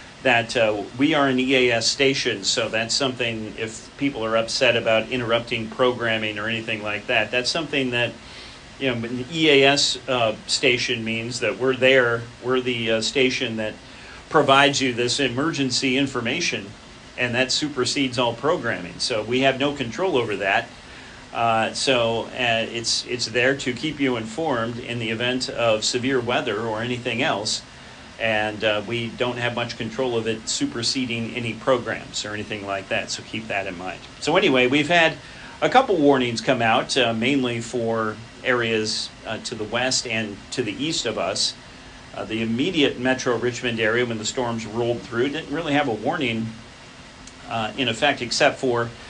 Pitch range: 115-130 Hz